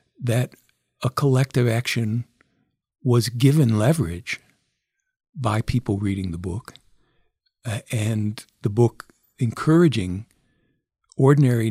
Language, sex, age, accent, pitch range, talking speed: English, male, 50-69, American, 110-135 Hz, 90 wpm